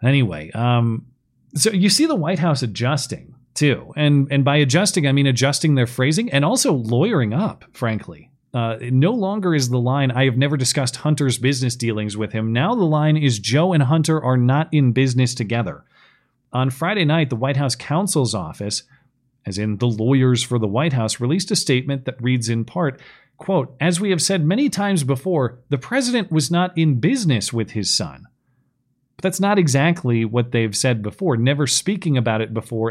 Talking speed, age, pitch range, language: 190 wpm, 40-59, 120-150 Hz, English